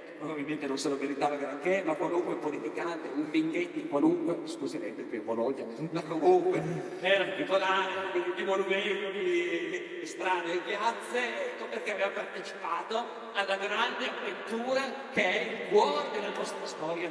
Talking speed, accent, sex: 145 wpm, native, male